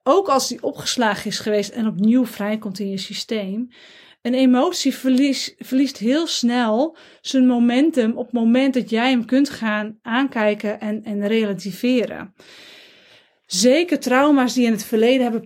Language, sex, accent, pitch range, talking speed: Dutch, female, Dutch, 210-255 Hz, 150 wpm